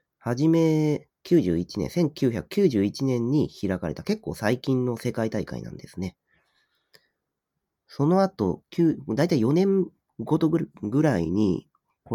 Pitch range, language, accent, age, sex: 95-145 Hz, Japanese, native, 40-59, male